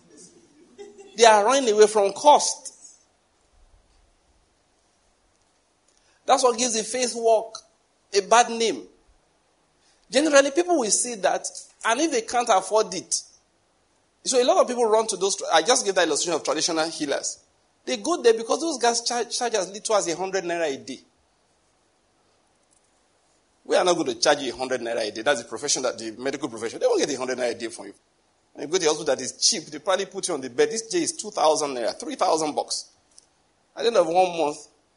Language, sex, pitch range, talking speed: English, male, 150-250 Hz, 195 wpm